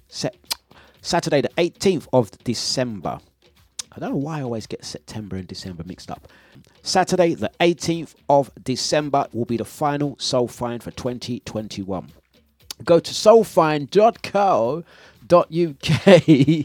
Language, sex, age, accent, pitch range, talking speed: English, male, 30-49, British, 130-180 Hz, 120 wpm